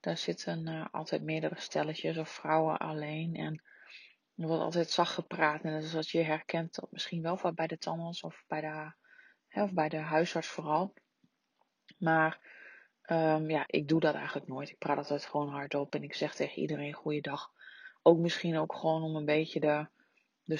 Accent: Dutch